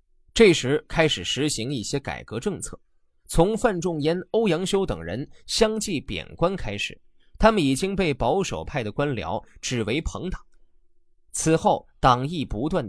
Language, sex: Chinese, male